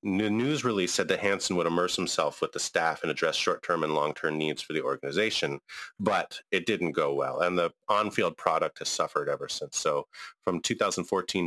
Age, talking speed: 30-49, 195 wpm